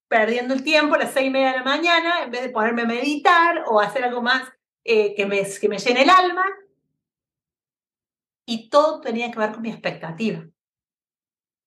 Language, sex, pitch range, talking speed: Spanish, female, 210-275 Hz, 190 wpm